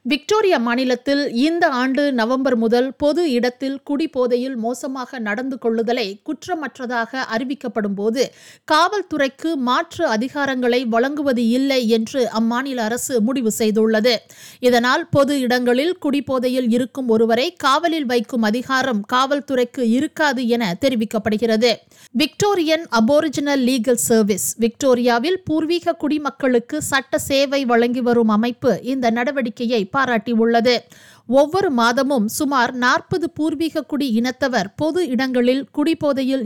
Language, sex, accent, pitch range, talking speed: Tamil, female, native, 235-280 Hz, 105 wpm